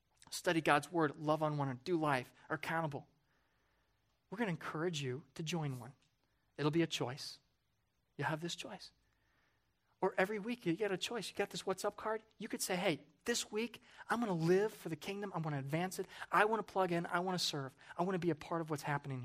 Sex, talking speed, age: male, 235 wpm, 30-49